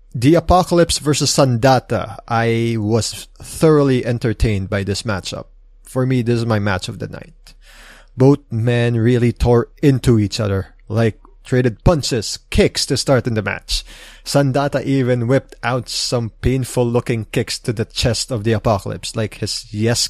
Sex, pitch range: male, 105-130 Hz